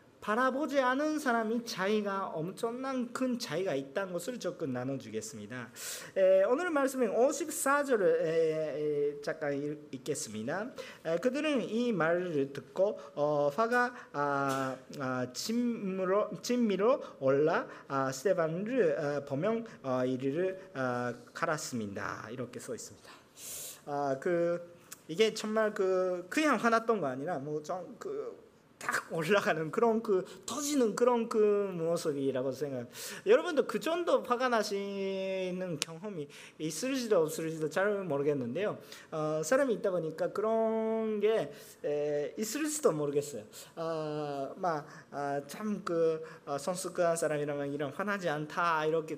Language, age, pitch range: Korean, 40-59, 150-230 Hz